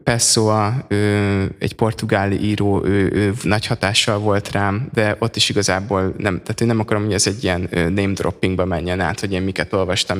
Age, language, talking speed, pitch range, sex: 20-39, Hungarian, 190 wpm, 95-110 Hz, male